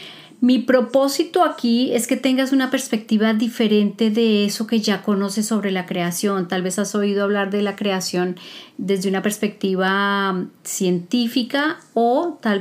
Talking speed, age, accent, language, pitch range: 150 wpm, 30-49, Colombian, Spanish, 195-240 Hz